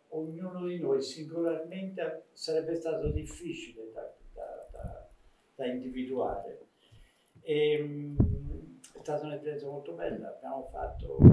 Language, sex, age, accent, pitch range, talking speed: Italian, male, 50-69, native, 140-170 Hz, 105 wpm